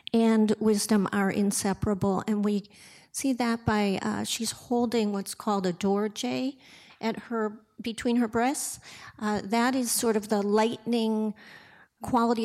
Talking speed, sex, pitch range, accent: 145 wpm, female, 190-235 Hz, American